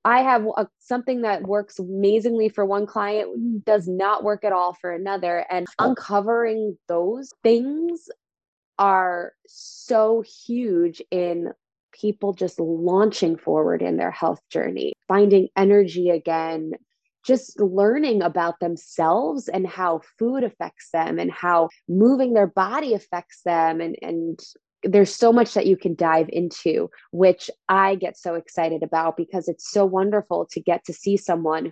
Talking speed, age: 145 wpm, 20-39